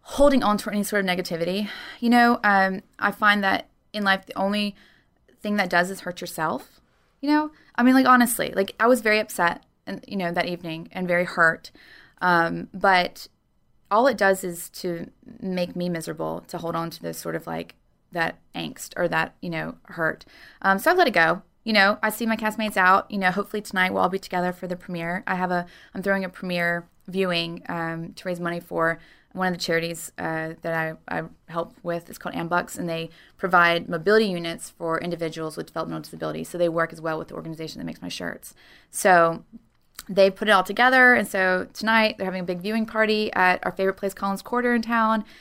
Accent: American